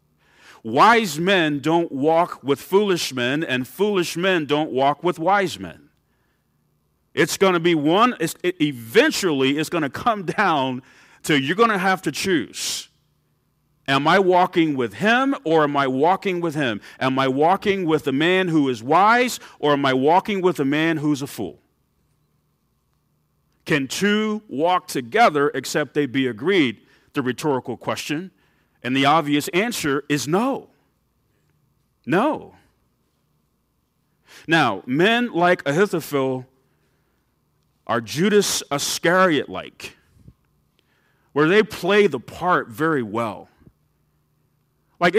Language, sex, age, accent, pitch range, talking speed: English, male, 40-59, American, 140-190 Hz, 125 wpm